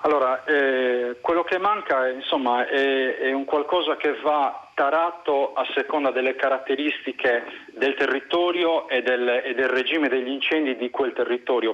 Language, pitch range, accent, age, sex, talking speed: Italian, 130-165 Hz, native, 40-59, male, 150 wpm